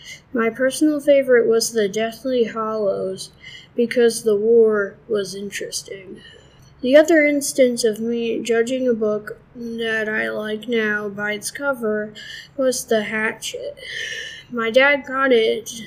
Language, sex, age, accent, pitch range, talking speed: English, female, 10-29, American, 215-255 Hz, 130 wpm